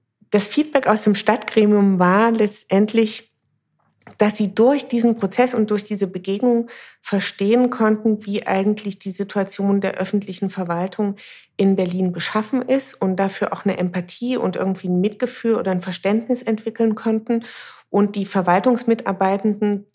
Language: German